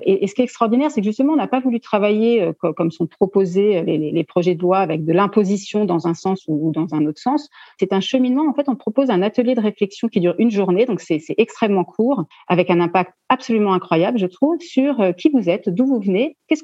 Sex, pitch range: female, 180-255 Hz